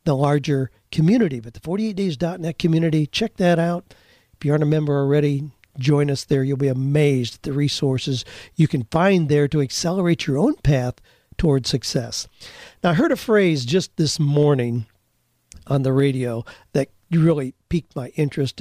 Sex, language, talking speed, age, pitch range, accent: male, English, 170 wpm, 50-69, 135-185 Hz, American